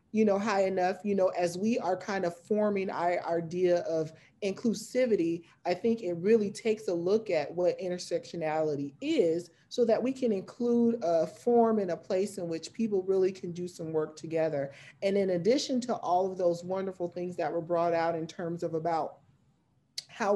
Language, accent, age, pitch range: English, American, 30-49, 165-205 Hz